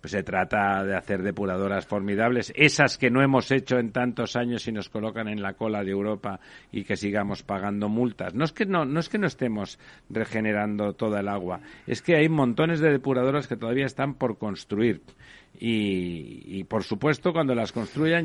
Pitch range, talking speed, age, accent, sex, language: 105-130 Hz, 195 wpm, 50-69, Spanish, male, Spanish